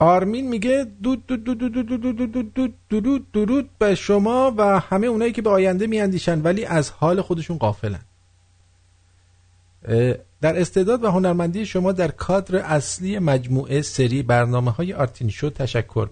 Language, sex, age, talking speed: English, male, 50-69, 125 wpm